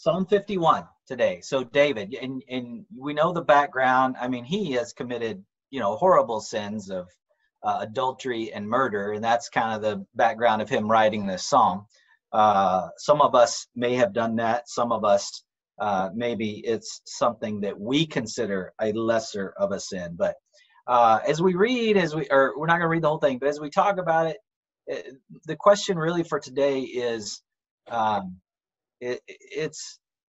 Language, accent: English, American